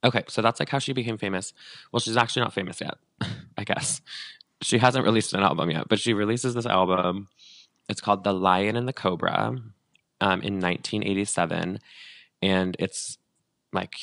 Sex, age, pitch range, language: male, 20-39, 90-110 Hz, English